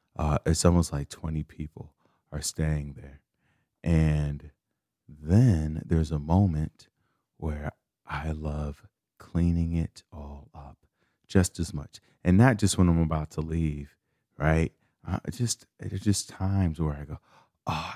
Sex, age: male, 30-49